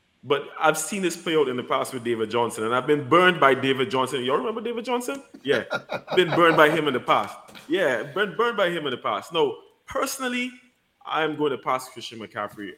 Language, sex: English, male